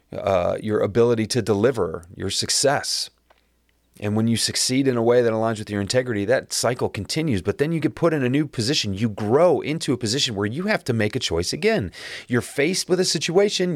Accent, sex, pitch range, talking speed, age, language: American, male, 90-140 Hz, 215 wpm, 30-49, English